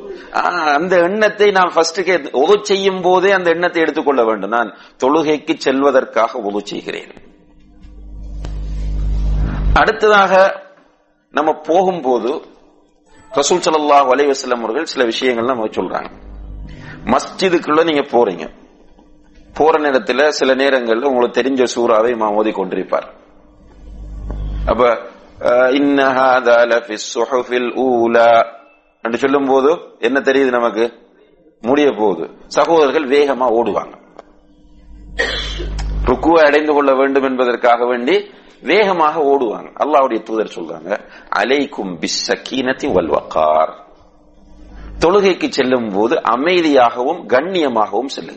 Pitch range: 120-165 Hz